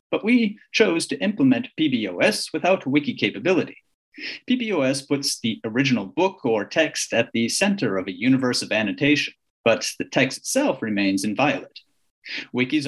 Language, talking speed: English, 145 wpm